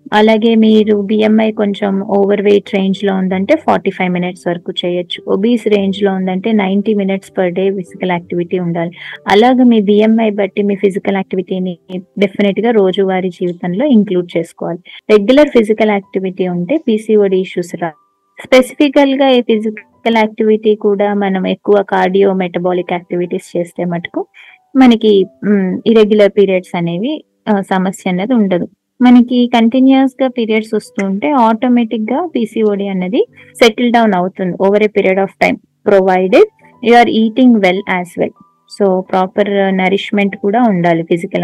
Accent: native